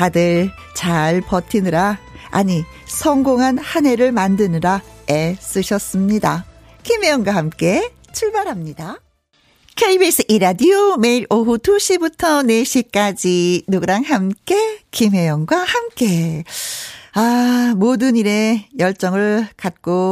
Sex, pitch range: female, 190-300 Hz